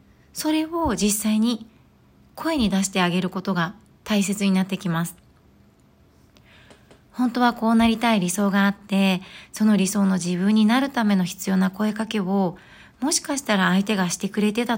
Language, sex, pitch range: Japanese, female, 190-230 Hz